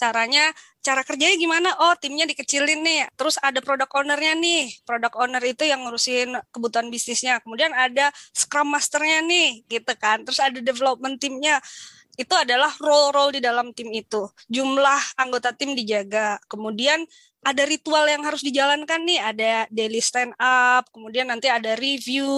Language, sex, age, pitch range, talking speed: Indonesian, female, 20-39, 240-300 Hz, 145 wpm